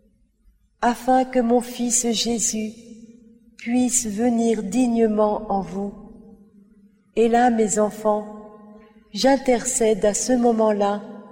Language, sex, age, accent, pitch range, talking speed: French, female, 40-59, French, 200-230 Hz, 95 wpm